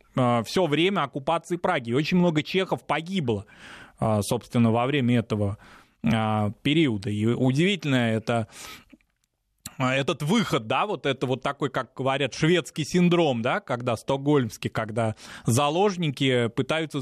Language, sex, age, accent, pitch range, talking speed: Russian, male, 20-39, native, 130-165 Hz, 120 wpm